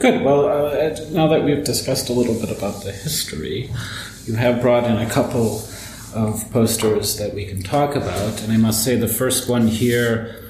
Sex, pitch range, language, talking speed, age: male, 100-120 Hz, English, 195 wpm, 40-59